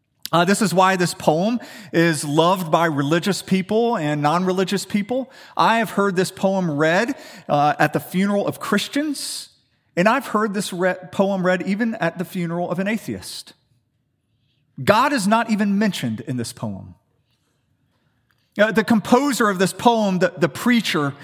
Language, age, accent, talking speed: English, 40-59, American, 160 wpm